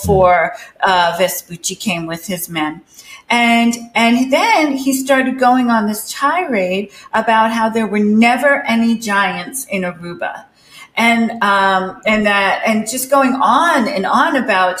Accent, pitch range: American, 185-245 Hz